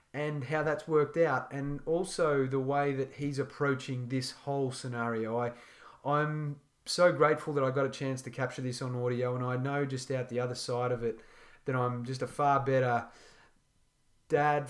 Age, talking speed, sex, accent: 30-49, 190 wpm, male, Australian